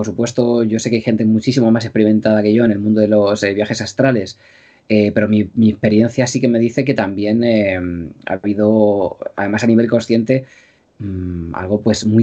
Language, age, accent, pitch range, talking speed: Spanish, 20-39, Spanish, 110-130 Hz, 200 wpm